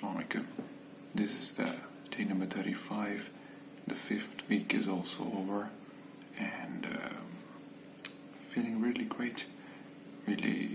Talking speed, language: 100 wpm, English